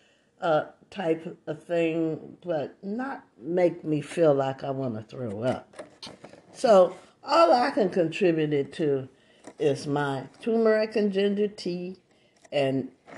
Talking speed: 130 wpm